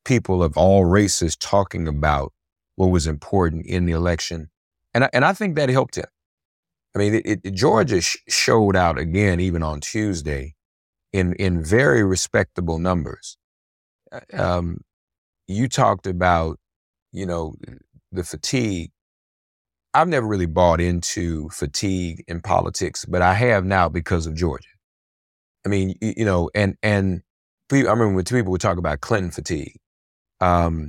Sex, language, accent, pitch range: male, English, American, 85-100 Hz